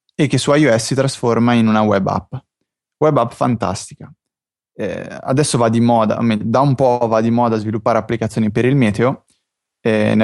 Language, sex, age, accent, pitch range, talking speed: Italian, male, 20-39, native, 110-125 Hz, 190 wpm